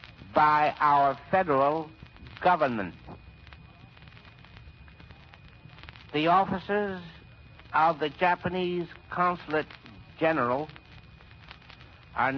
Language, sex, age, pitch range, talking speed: English, male, 60-79, 140-165 Hz, 60 wpm